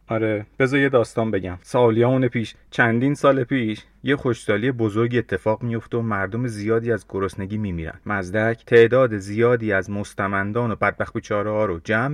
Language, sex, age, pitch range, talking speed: Persian, male, 30-49, 105-125 Hz, 155 wpm